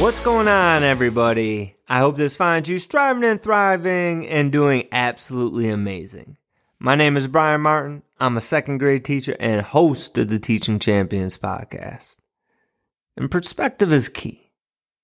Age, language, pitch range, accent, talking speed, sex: 30-49, English, 110-150 Hz, American, 150 wpm, male